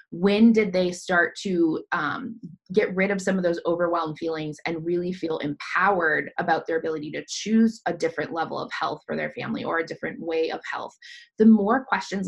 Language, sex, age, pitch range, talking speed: English, female, 20-39, 160-200 Hz, 195 wpm